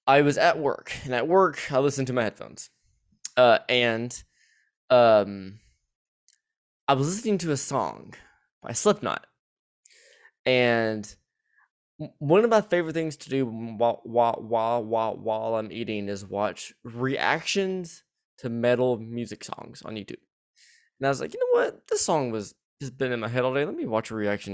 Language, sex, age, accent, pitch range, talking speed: English, male, 20-39, American, 110-145 Hz, 165 wpm